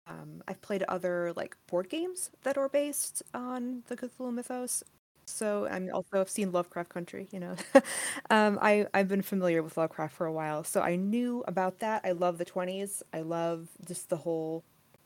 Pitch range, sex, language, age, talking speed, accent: 170-205 Hz, female, English, 20-39, 190 wpm, American